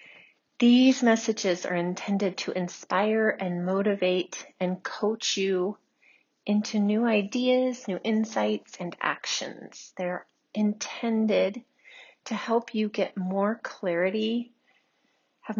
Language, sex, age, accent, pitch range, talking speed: English, female, 40-59, American, 190-245 Hz, 105 wpm